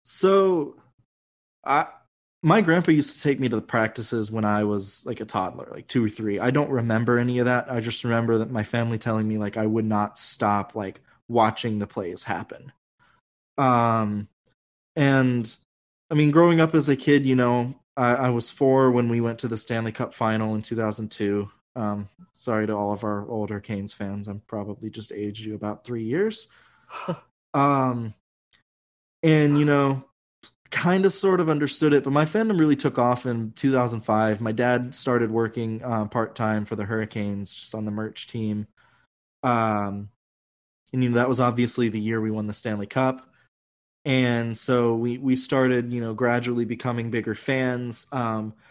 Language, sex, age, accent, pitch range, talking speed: English, male, 20-39, American, 110-125 Hz, 180 wpm